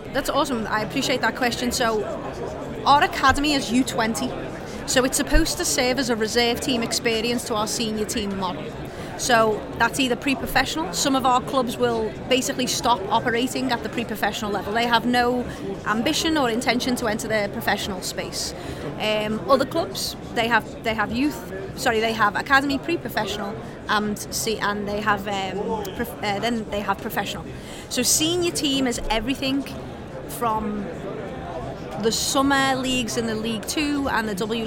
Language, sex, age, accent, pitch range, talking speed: English, female, 30-49, British, 220-260 Hz, 165 wpm